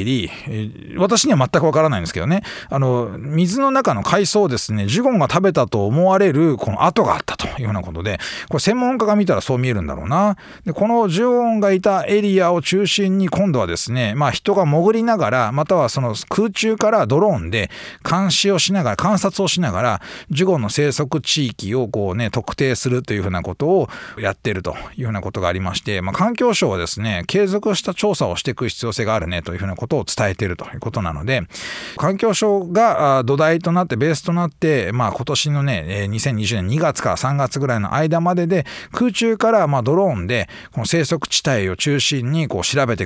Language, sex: Japanese, male